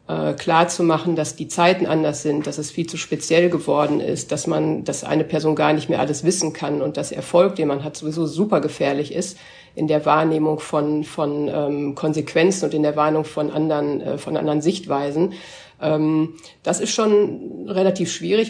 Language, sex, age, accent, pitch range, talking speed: German, female, 50-69, German, 150-180 Hz, 190 wpm